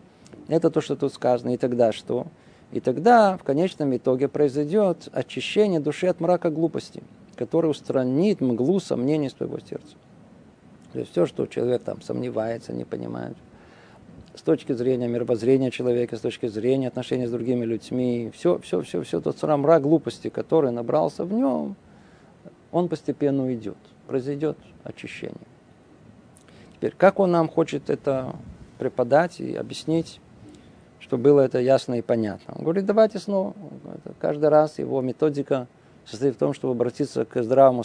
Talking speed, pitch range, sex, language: 145 wpm, 125-180 Hz, male, Russian